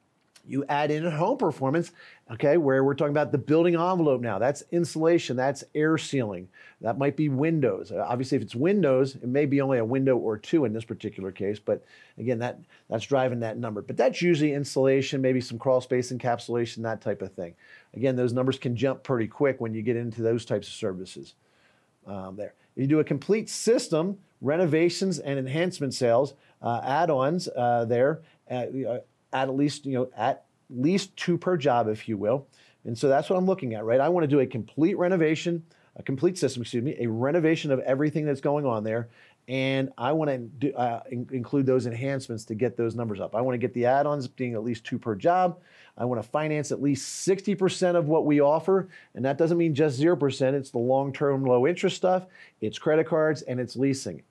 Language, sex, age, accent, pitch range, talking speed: English, male, 40-59, American, 120-155 Hz, 210 wpm